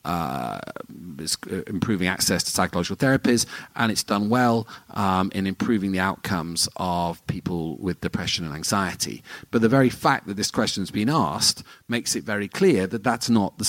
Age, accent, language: 40-59, British, English